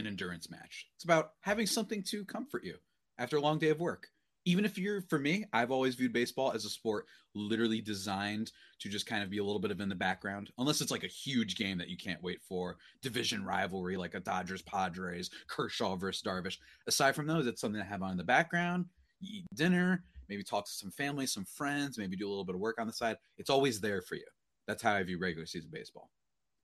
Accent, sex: American, male